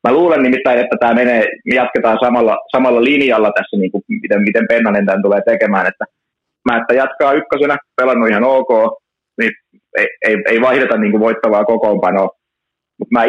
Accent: native